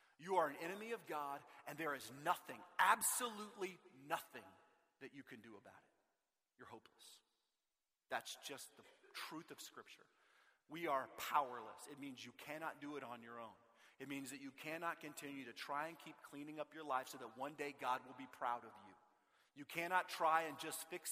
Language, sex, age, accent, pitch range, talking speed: English, male, 30-49, American, 140-190 Hz, 195 wpm